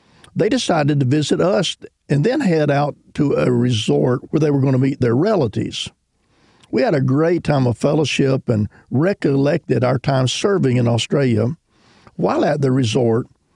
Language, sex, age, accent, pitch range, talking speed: English, male, 50-69, American, 125-150 Hz, 170 wpm